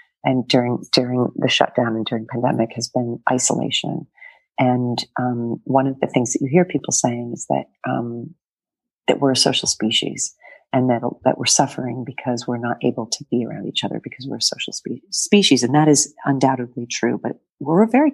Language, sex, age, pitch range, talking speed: English, female, 40-59, 125-150 Hz, 195 wpm